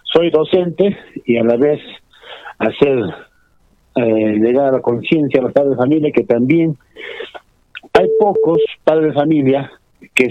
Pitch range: 110-150 Hz